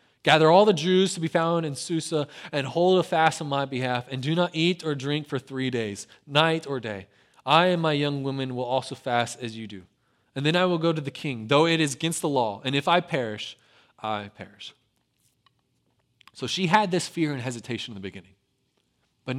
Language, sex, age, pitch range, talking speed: English, male, 20-39, 125-180 Hz, 215 wpm